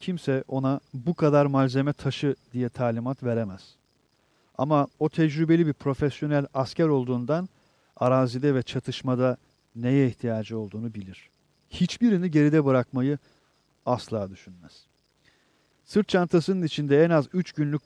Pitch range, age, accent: 120-150 Hz, 40-59, native